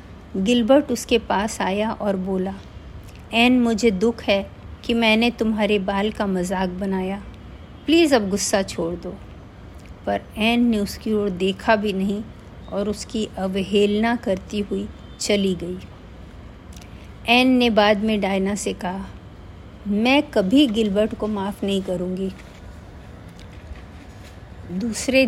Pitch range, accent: 170-240 Hz, native